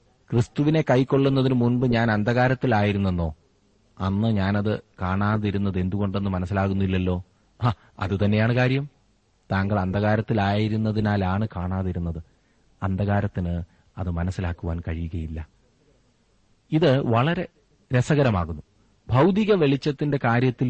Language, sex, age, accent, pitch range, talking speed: Malayalam, male, 30-49, native, 95-125 Hz, 80 wpm